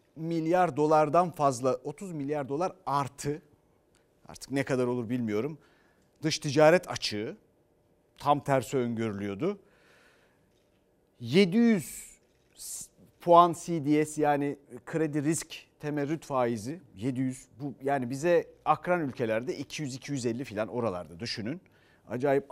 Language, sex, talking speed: Turkish, male, 100 wpm